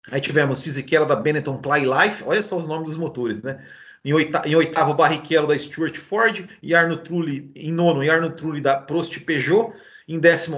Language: Portuguese